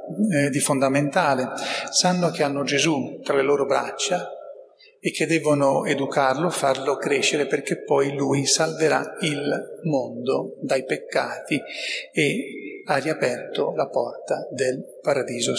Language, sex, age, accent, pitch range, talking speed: Italian, male, 40-59, native, 140-190 Hz, 125 wpm